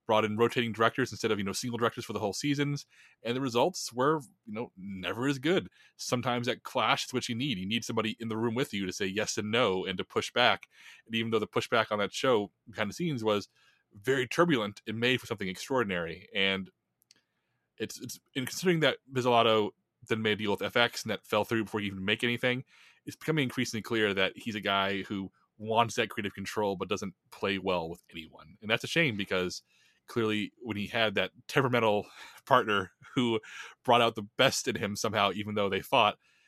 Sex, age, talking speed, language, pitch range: male, 20-39, 215 wpm, English, 105-130 Hz